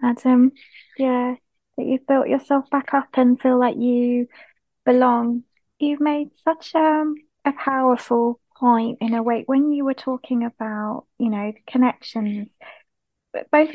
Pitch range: 230-275 Hz